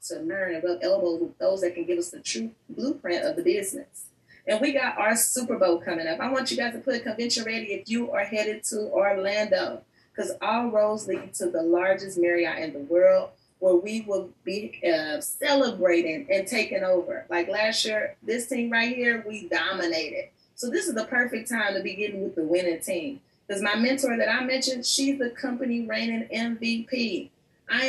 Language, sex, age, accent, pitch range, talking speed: English, female, 30-49, American, 180-260 Hz, 200 wpm